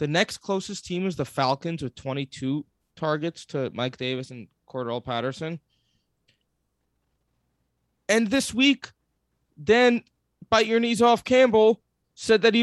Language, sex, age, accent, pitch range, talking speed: English, male, 20-39, American, 120-175 Hz, 135 wpm